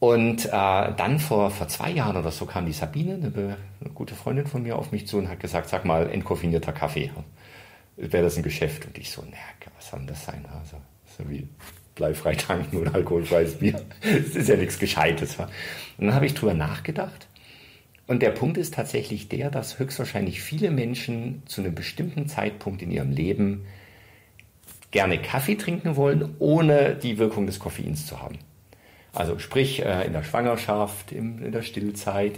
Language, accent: German, German